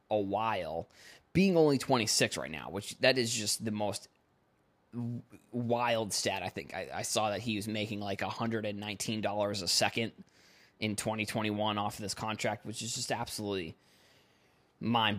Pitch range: 100-120 Hz